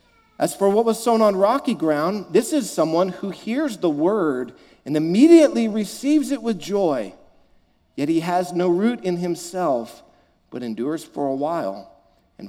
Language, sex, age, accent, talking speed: English, male, 50-69, American, 165 wpm